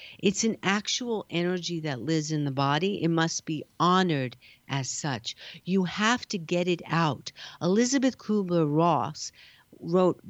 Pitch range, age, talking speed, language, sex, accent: 155-205 Hz, 50-69, 140 wpm, English, female, American